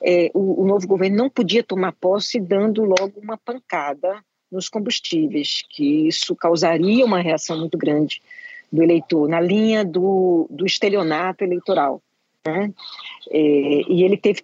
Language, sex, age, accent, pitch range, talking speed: Portuguese, female, 50-69, Brazilian, 170-250 Hz, 145 wpm